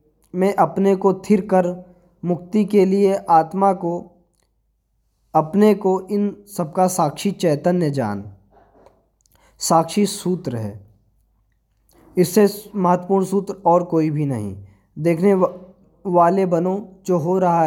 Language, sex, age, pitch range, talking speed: Hindi, male, 20-39, 165-195 Hz, 110 wpm